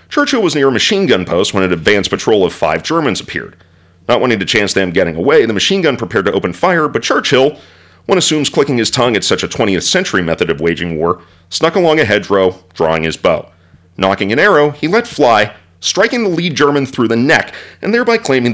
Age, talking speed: 40-59, 220 wpm